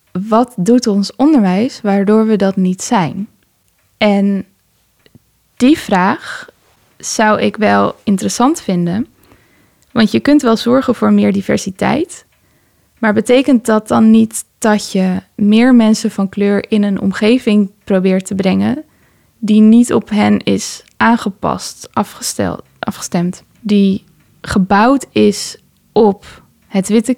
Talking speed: 120 wpm